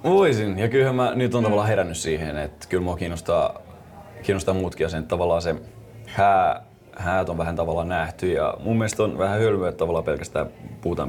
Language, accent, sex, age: Finnish, native, male, 30-49